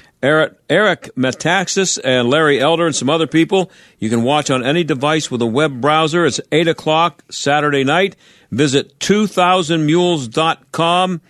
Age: 50-69